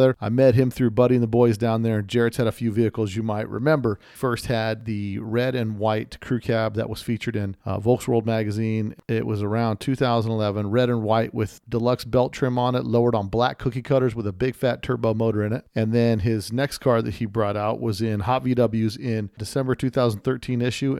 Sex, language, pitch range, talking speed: male, English, 110-130 Hz, 215 wpm